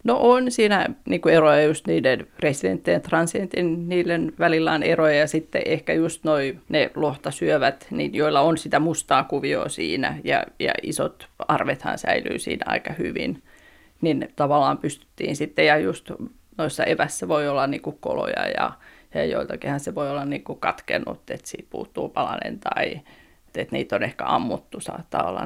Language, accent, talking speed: Finnish, native, 165 wpm